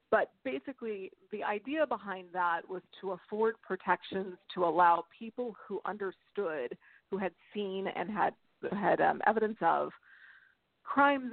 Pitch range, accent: 180-220 Hz, American